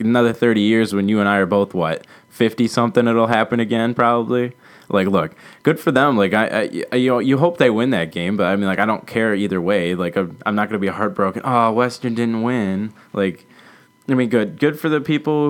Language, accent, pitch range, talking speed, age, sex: English, American, 100-125 Hz, 215 wpm, 20-39, male